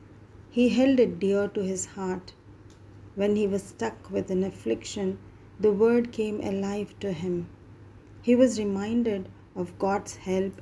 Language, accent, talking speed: English, Indian, 145 wpm